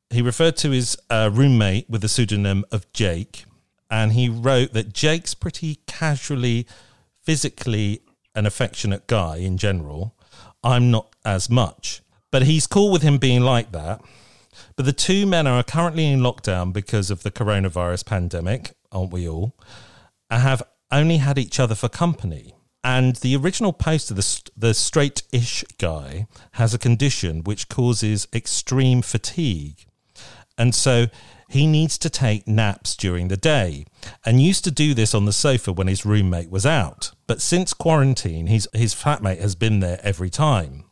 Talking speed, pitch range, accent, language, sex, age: 160 wpm, 100-135 Hz, British, English, male, 40-59